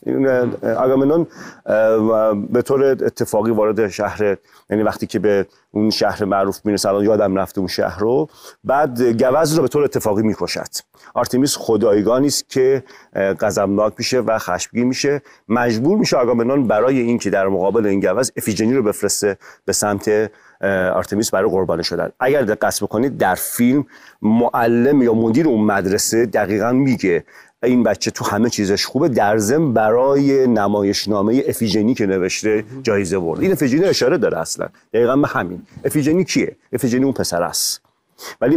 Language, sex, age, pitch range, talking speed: Persian, male, 40-59, 100-130 Hz, 155 wpm